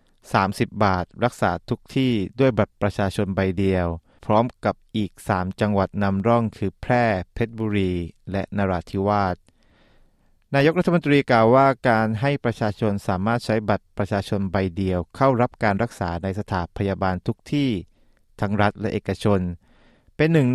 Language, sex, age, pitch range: Thai, male, 20-39, 95-120 Hz